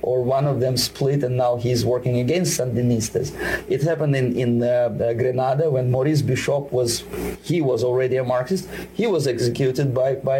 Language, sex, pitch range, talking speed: English, male, 125-155 Hz, 180 wpm